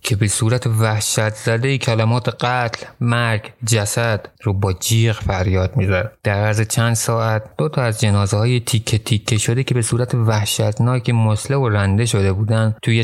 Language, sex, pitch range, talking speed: Persian, male, 100-120 Hz, 165 wpm